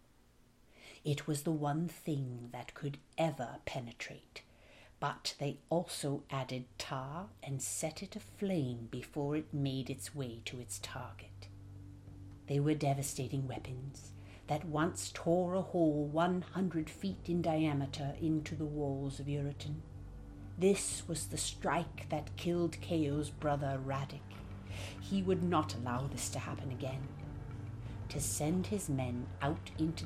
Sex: female